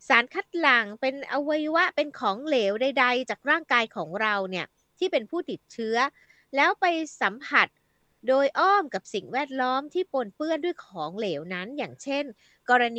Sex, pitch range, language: female, 205-295 Hz, Thai